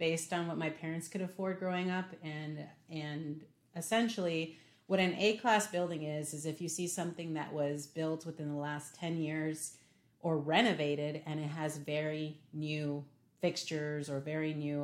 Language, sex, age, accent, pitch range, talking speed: English, female, 30-49, American, 150-170 Hz, 165 wpm